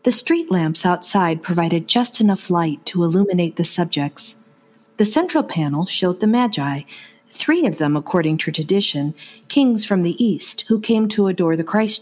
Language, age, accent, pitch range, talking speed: English, 50-69, American, 165-225 Hz, 170 wpm